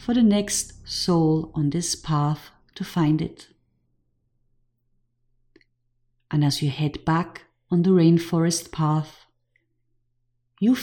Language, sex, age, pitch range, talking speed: English, female, 40-59, 120-175 Hz, 110 wpm